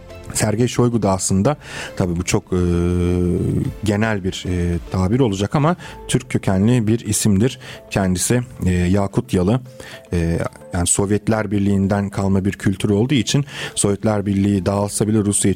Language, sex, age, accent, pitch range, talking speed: Turkish, male, 40-59, native, 95-120 Hz, 140 wpm